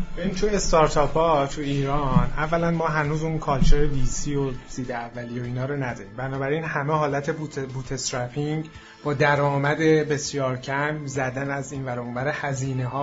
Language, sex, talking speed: Persian, male, 155 wpm